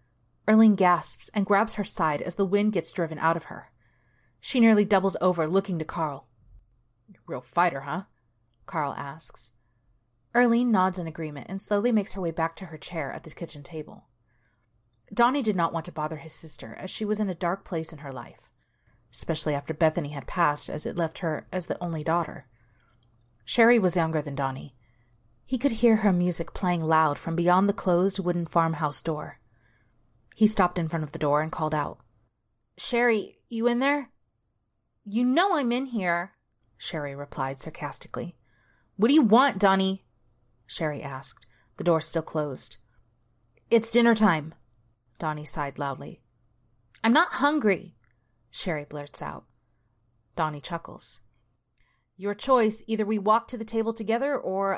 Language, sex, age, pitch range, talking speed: English, female, 30-49, 120-195 Hz, 165 wpm